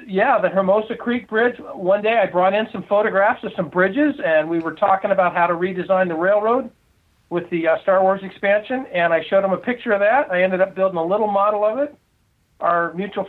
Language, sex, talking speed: English, male, 225 wpm